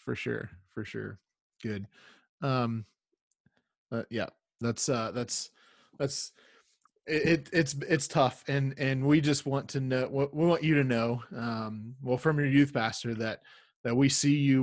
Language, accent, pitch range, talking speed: English, American, 110-135 Hz, 165 wpm